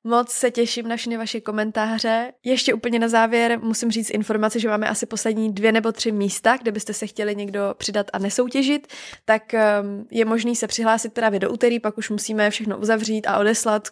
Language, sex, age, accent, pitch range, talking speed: Czech, female, 20-39, native, 200-230 Hz, 195 wpm